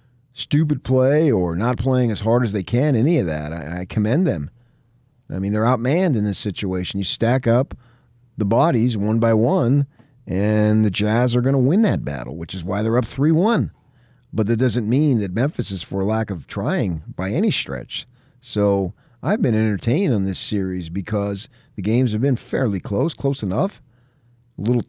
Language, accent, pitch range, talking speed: English, American, 95-125 Hz, 185 wpm